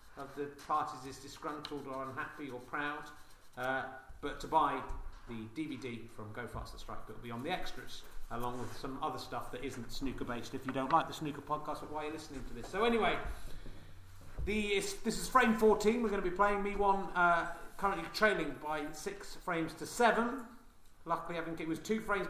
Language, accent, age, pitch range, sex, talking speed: English, British, 40-59, 130-170 Hz, male, 205 wpm